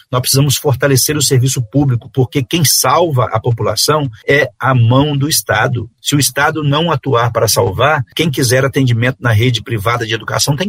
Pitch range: 120-145 Hz